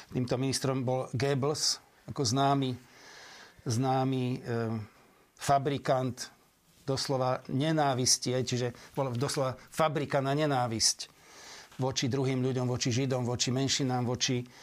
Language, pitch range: Slovak, 130-145 Hz